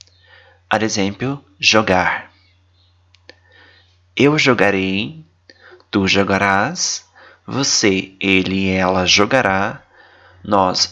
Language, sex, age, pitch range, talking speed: Italian, male, 20-39, 90-110 Hz, 65 wpm